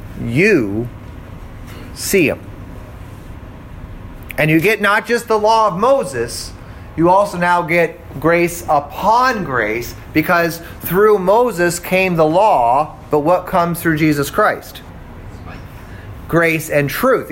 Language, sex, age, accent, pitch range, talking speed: English, male, 30-49, American, 115-185 Hz, 120 wpm